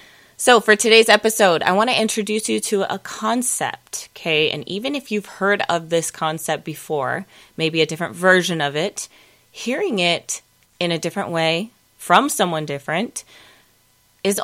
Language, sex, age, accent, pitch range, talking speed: English, female, 20-39, American, 155-200 Hz, 160 wpm